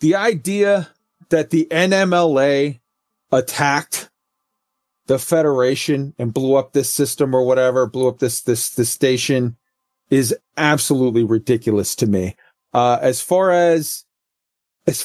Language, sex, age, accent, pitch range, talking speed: English, male, 40-59, American, 120-155 Hz, 125 wpm